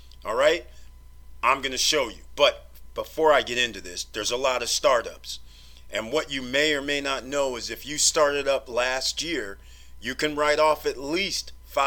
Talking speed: 195 wpm